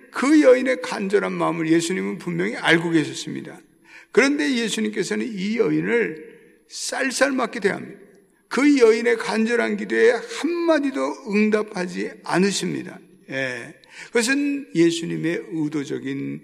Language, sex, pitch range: Korean, male, 155-230 Hz